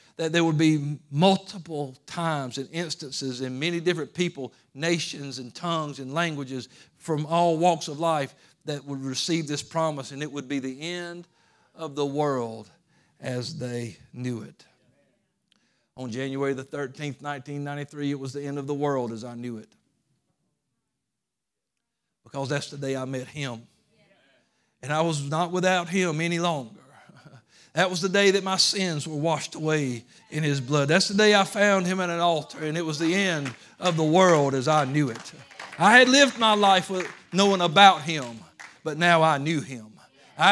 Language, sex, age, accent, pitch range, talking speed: English, male, 50-69, American, 140-175 Hz, 180 wpm